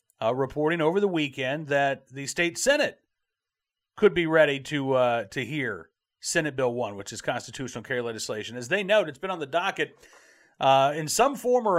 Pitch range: 135-190 Hz